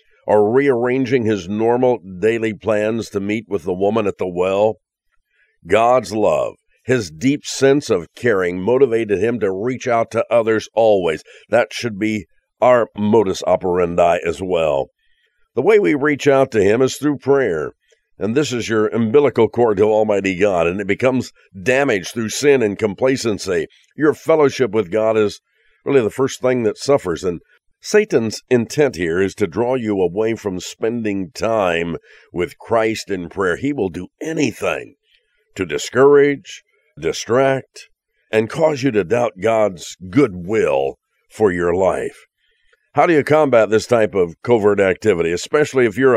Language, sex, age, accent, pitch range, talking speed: English, male, 50-69, American, 105-140 Hz, 155 wpm